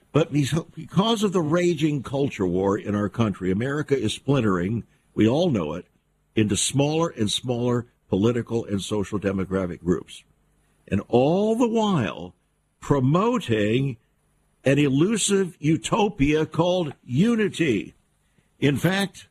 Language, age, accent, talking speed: English, 60-79, American, 120 wpm